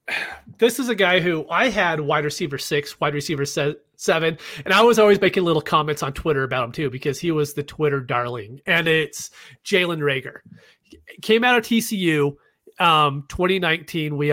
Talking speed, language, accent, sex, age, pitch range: 180 wpm, English, American, male, 30-49, 145-195 Hz